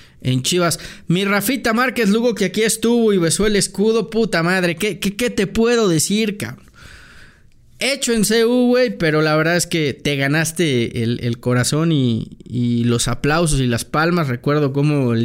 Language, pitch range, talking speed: English, 125-180 Hz, 180 wpm